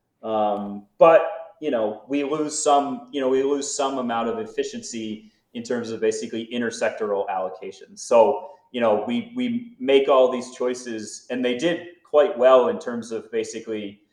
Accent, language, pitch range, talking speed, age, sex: American, English, 105-135 Hz, 165 wpm, 30-49, male